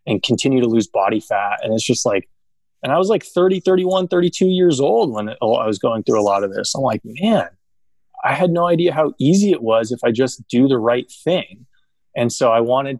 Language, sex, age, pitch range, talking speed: English, male, 20-39, 105-130 Hz, 230 wpm